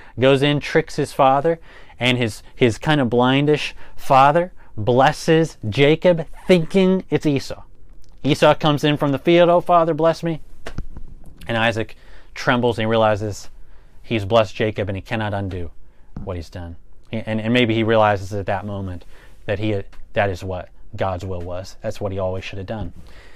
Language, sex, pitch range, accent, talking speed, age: English, male, 105-135 Hz, American, 170 wpm, 30-49